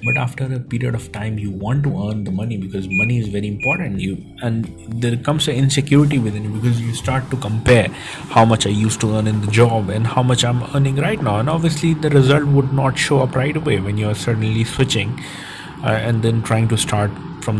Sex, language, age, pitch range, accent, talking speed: male, English, 30-49, 110-140 Hz, Indian, 230 wpm